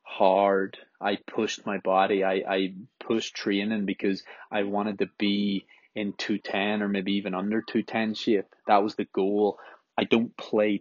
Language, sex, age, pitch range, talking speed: English, male, 20-39, 100-105 Hz, 160 wpm